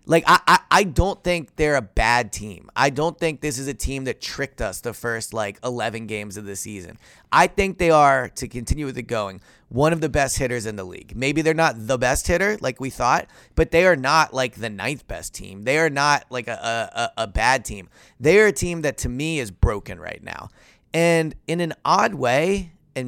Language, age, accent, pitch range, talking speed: English, 20-39, American, 120-155 Hz, 230 wpm